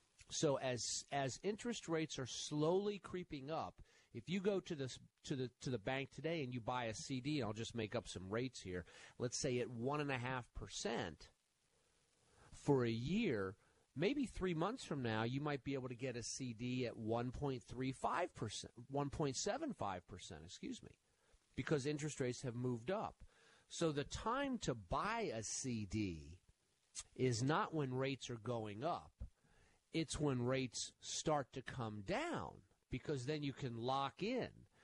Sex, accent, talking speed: male, American, 175 wpm